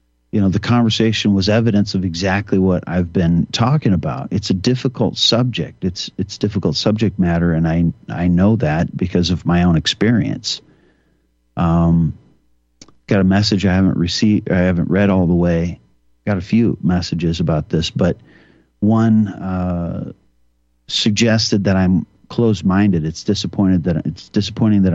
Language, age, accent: English, 50-69, American